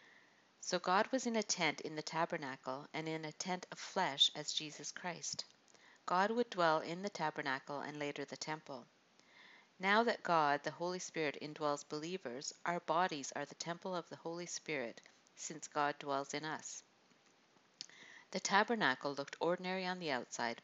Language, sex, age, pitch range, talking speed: English, female, 50-69, 145-180 Hz, 165 wpm